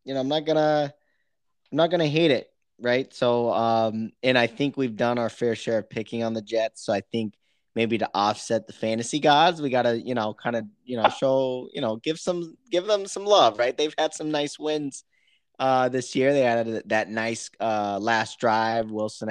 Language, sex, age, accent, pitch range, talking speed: English, male, 20-39, American, 110-135 Hz, 220 wpm